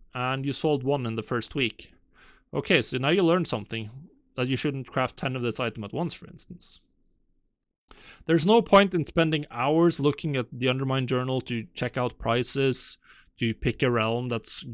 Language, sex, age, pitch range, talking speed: English, male, 30-49, 125-175 Hz, 185 wpm